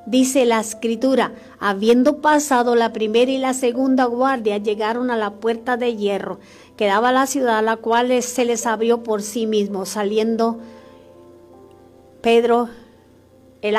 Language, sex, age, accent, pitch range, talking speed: Spanish, female, 40-59, American, 215-250 Hz, 145 wpm